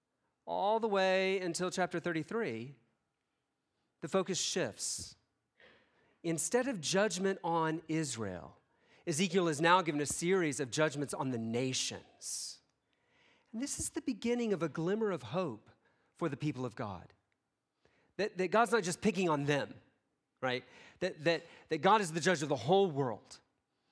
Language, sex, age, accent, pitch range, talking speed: English, male, 40-59, American, 120-175 Hz, 150 wpm